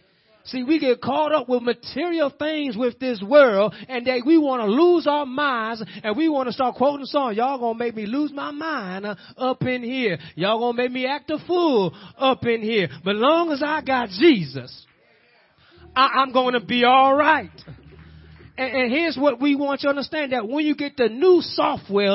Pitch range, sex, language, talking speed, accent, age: 225-290 Hz, male, English, 210 wpm, American, 30-49